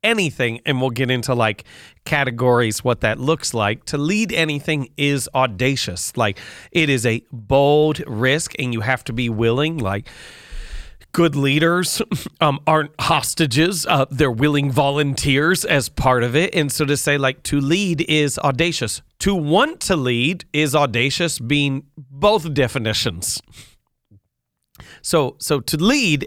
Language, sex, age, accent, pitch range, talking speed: English, male, 40-59, American, 120-155 Hz, 145 wpm